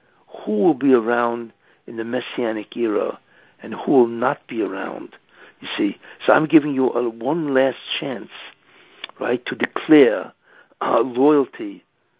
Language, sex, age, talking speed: English, male, 60-79, 140 wpm